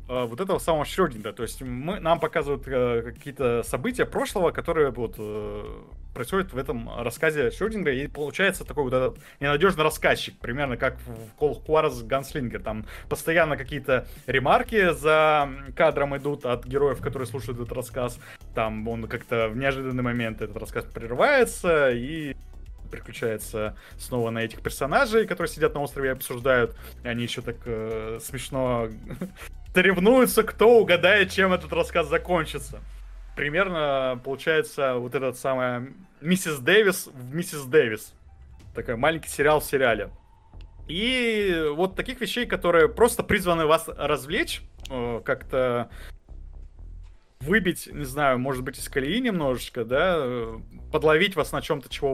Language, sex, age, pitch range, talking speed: Russian, male, 20-39, 115-160 Hz, 135 wpm